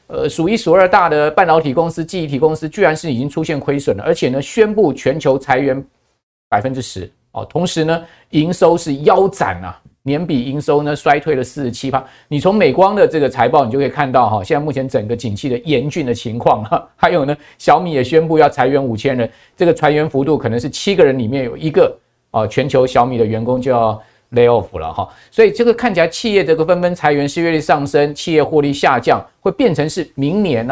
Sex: male